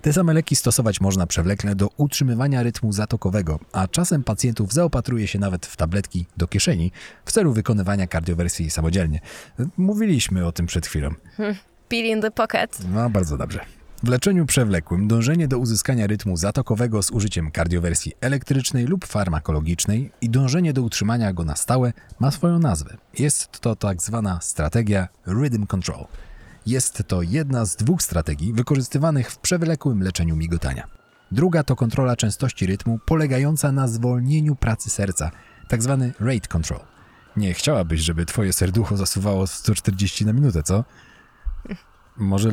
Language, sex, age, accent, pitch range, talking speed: Polish, male, 40-59, native, 90-130 Hz, 145 wpm